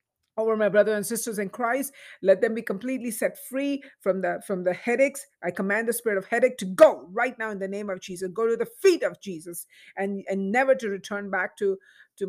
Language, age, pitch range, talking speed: English, 50-69, 195-235 Hz, 230 wpm